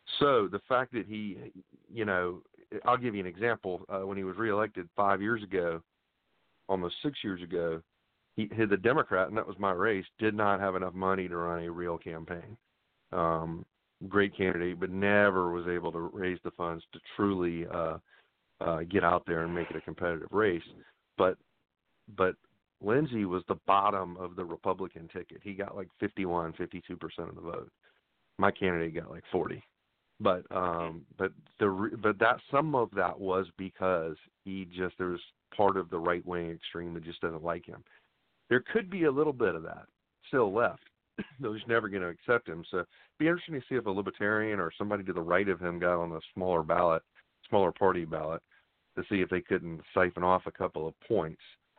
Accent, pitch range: American, 85-100 Hz